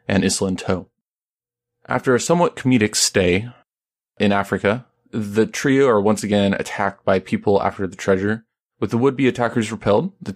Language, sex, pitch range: English, male, 95-115 Hz